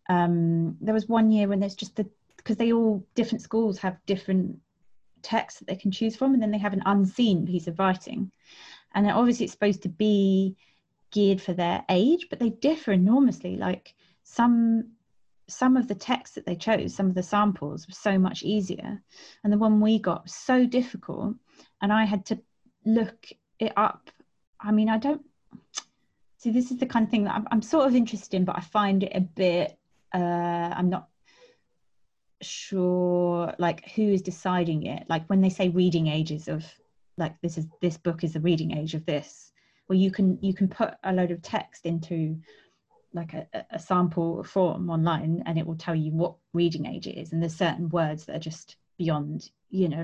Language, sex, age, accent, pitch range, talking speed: English, female, 20-39, British, 170-215 Hz, 200 wpm